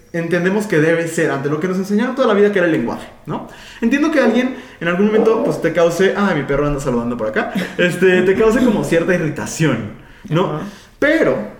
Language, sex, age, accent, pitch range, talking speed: Spanish, male, 30-49, Mexican, 150-205 Hz, 210 wpm